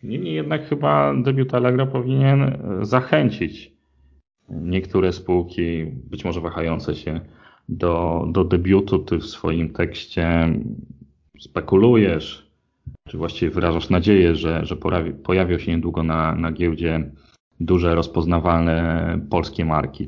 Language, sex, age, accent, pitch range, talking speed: Polish, male, 30-49, native, 75-90 Hz, 115 wpm